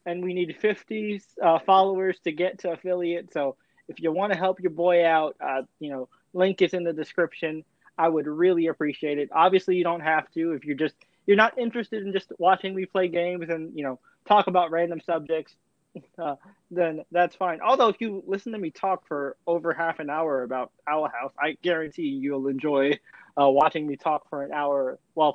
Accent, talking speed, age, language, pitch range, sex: American, 205 wpm, 20-39, English, 160-195 Hz, male